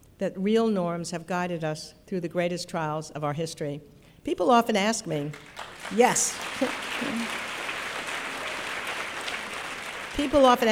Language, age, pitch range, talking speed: English, 60-79, 170-205 Hz, 110 wpm